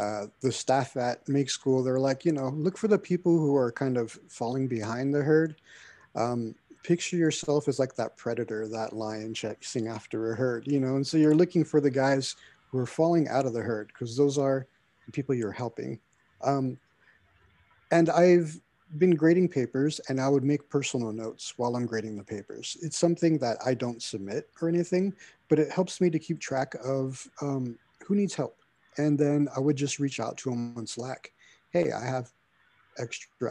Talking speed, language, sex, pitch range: 195 wpm, English, male, 120-150 Hz